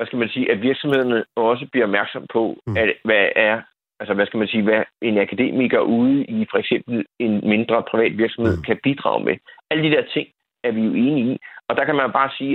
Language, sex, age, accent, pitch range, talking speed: Danish, male, 30-49, native, 115-145 Hz, 225 wpm